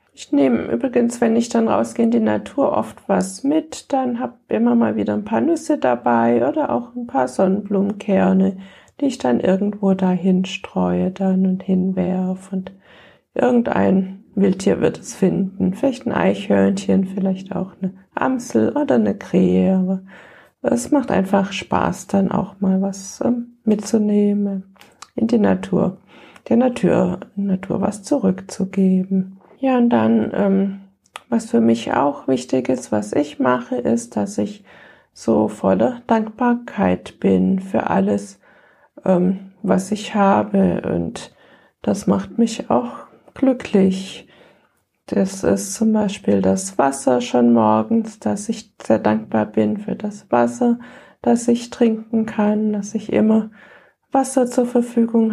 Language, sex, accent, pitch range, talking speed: German, female, German, 185-230 Hz, 140 wpm